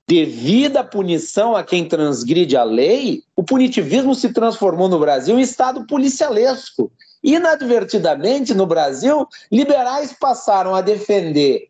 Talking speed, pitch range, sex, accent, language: 120 wpm, 165-265 Hz, male, Brazilian, Portuguese